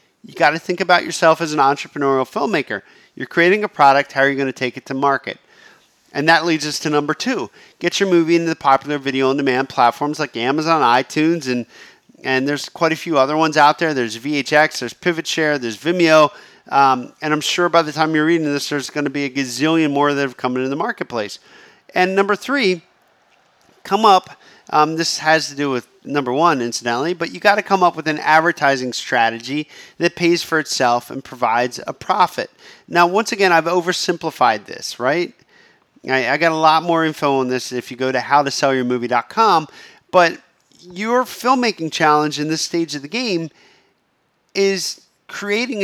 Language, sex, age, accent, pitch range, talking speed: English, male, 40-59, American, 140-175 Hz, 190 wpm